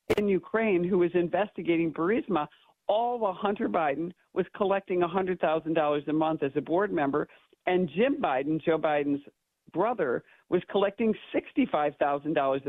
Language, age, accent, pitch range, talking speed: English, 50-69, American, 155-185 Hz, 130 wpm